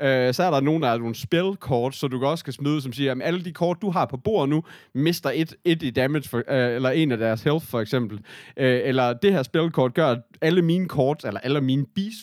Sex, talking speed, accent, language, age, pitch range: male, 240 wpm, native, Danish, 30-49, 125-160 Hz